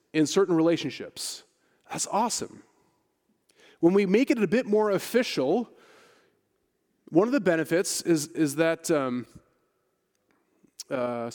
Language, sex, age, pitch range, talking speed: English, male, 30-49, 155-205 Hz, 115 wpm